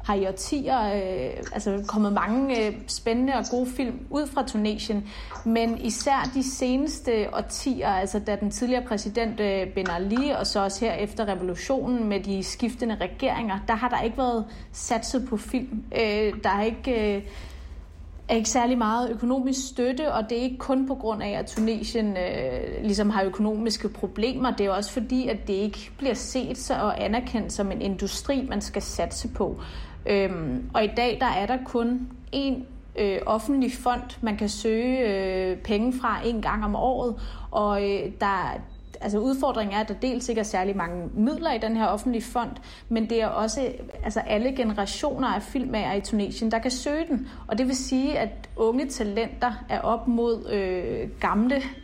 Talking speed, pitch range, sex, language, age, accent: 185 wpm, 205-250 Hz, female, Danish, 30-49, native